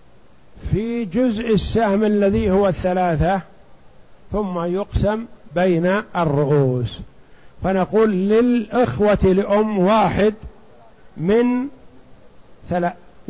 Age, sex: 50-69, male